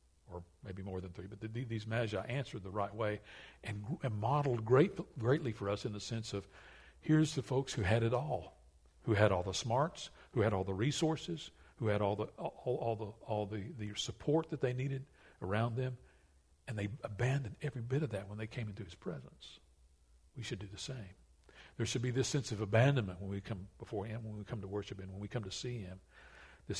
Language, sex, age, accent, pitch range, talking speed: English, male, 60-79, American, 100-120 Hz, 210 wpm